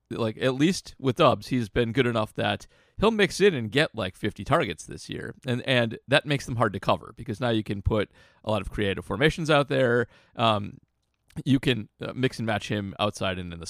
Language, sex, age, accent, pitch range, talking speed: English, male, 30-49, American, 100-125 Hz, 230 wpm